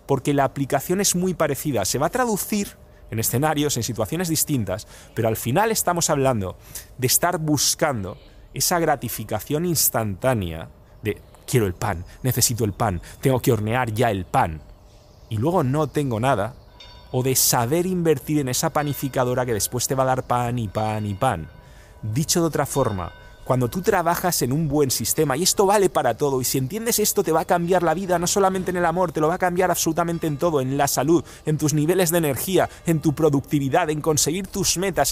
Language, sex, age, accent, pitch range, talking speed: English, male, 30-49, Spanish, 110-160 Hz, 200 wpm